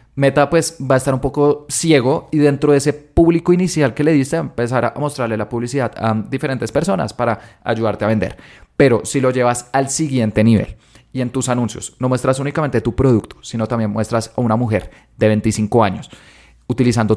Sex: male